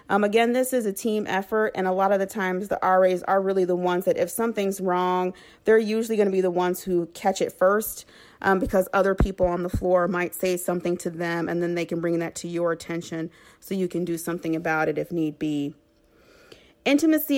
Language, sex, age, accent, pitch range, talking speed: English, female, 30-49, American, 170-190 Hz, 230 wpm